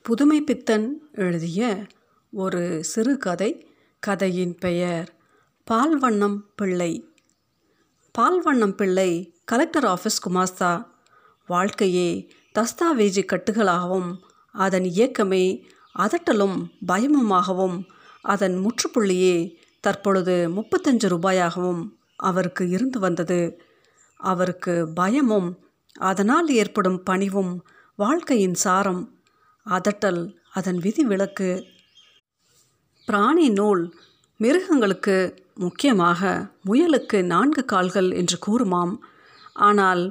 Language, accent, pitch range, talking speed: Tamil, native, 180-240 Hz, 75 wpm